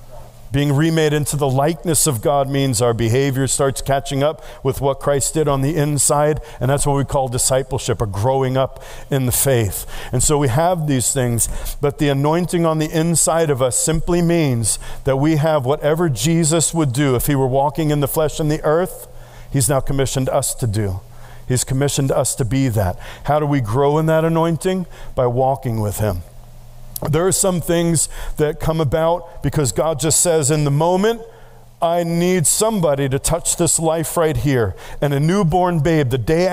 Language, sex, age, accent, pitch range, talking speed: English, male, 50-69, American, 120-150 Hz, 190 wpm